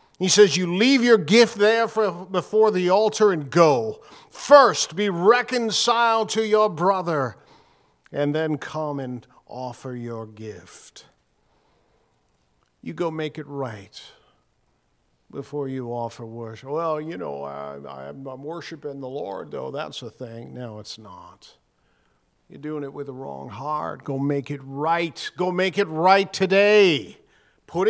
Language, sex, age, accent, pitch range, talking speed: English, male, 50-69, American, 120-175 Hz, 140 wpm